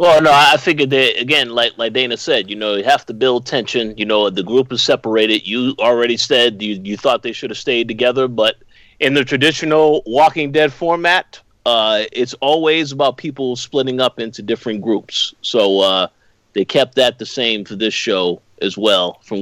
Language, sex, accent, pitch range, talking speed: English, male, American, 110-135 Hz, 200 wpm